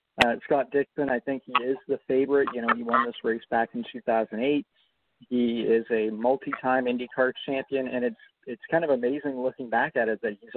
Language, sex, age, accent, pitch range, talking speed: English, male, 40-59, American, 120-140 Hz, 205 wpm